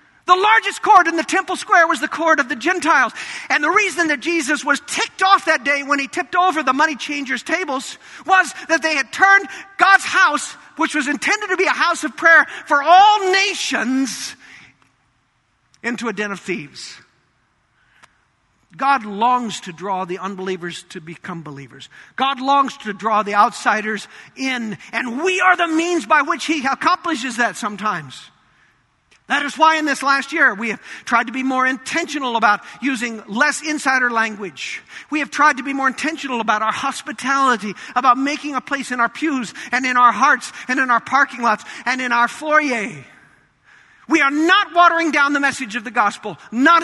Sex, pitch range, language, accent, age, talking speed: male, 230-320 Hz, English, American, 50-69, 180 wpm